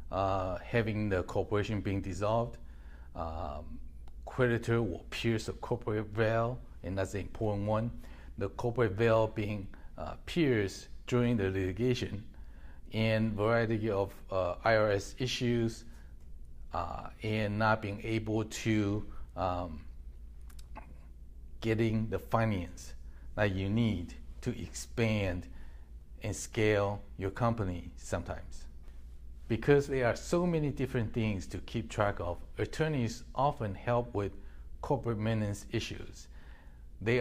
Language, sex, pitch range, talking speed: English, male, 75-115 Hz, 115 wpm